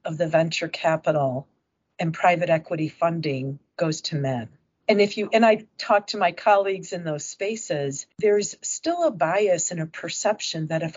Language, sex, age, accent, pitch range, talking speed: English, female, 50-69, American, 155-205 Hz, 175 wpm